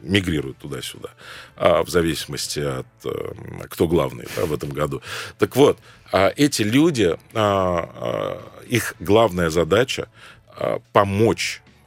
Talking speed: 95 wpm